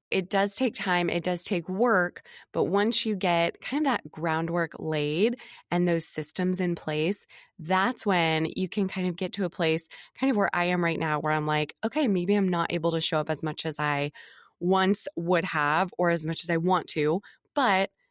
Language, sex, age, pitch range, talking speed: English, female, 20-39, 160-195 Hz, 215 wpm